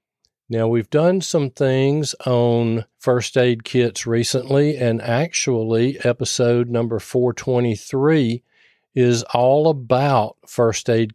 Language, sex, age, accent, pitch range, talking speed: English, male, 40-59, American, 115-140 Hz, 110 wpm